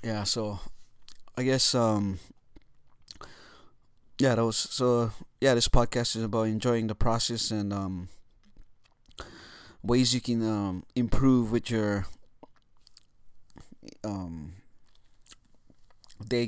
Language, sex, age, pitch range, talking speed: English, male, 20-39, 110-125 Hz, 100 wpm